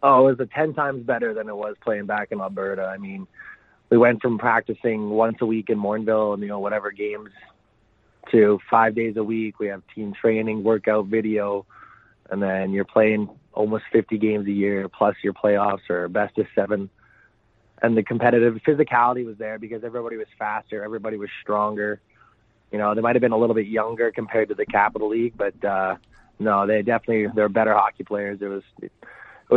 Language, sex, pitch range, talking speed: English, male, 105-115 Hz, 195 wpm